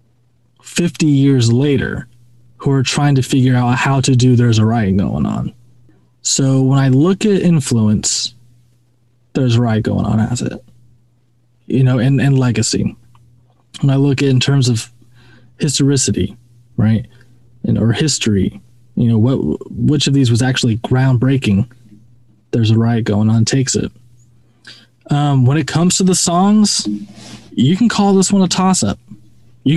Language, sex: English, male